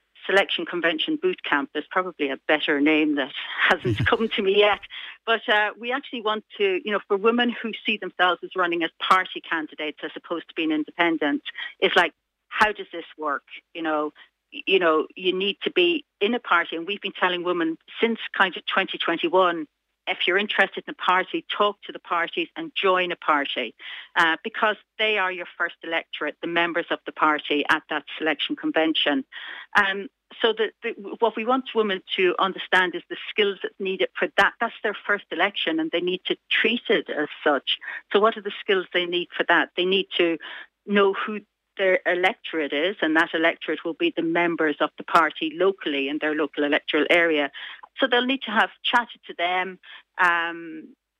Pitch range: 170-225 Hz